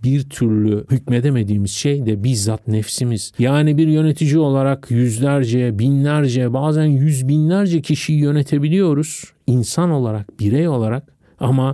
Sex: male